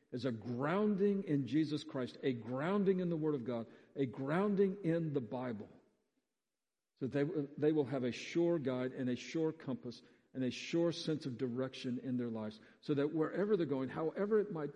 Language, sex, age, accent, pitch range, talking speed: English, male, 50-69, American, 125-165 Hz, 200 wpm